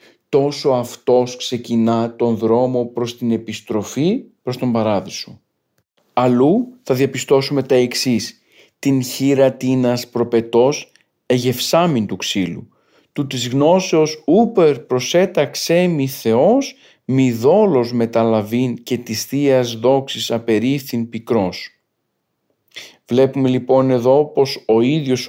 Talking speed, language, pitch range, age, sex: 105 wpm, Greek, 120-145 Hz, 40-59, male